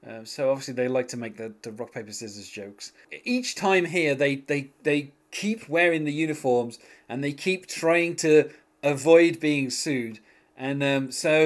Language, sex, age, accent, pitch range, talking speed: English, male, 30-49, British, 120-155 Hz, 180 wpm